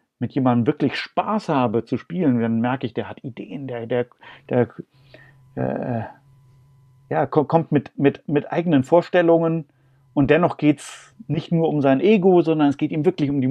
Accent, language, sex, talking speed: German, German, male, 180 wpm